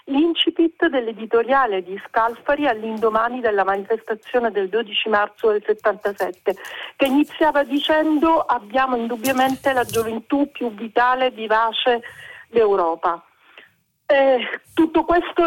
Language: Italian